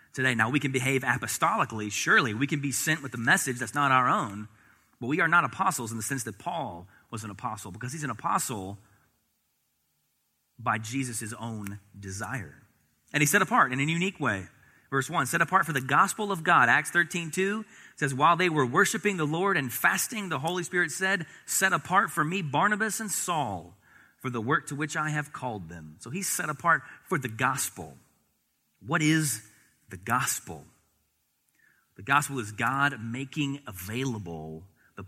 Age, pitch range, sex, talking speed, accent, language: 30-49, 105-150 Hz, male, 180 wpm, American, English